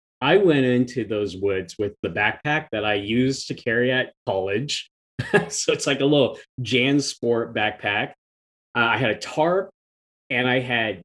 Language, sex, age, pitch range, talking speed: English, male, 30-49, 100-125 Hz, 170 wpm